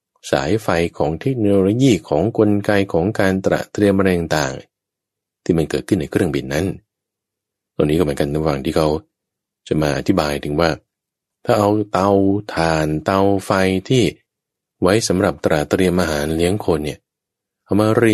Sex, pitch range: male, 85-110 Hz